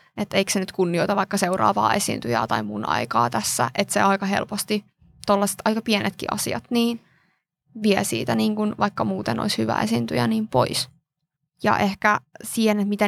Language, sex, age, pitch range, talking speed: Finnish, female, 20-39, 180-215 Hz, 160 wpm